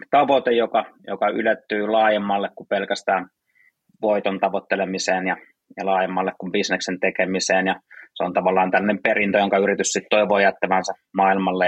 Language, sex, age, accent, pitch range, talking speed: Finnish, male, 20-39, native, 95-105 Hz, 140 wpm